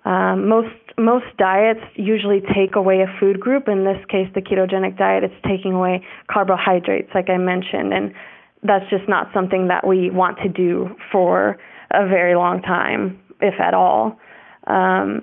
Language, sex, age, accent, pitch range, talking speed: English, female, 20-39, American, 185-210 Hz, 165 wpm